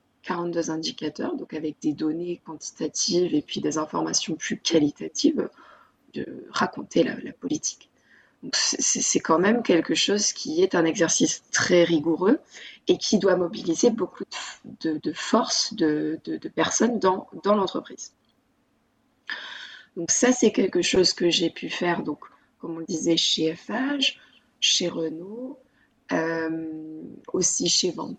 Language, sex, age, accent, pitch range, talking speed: French, female, 20-39, French, 160-230 Hz, 145 wpm